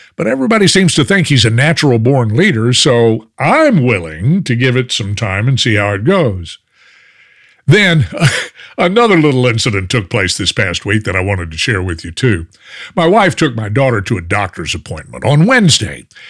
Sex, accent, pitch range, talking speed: male, American, 105-155 Hz, 185 wpm